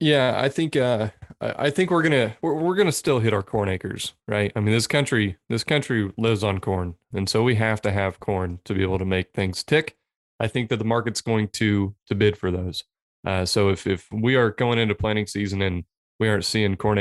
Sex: male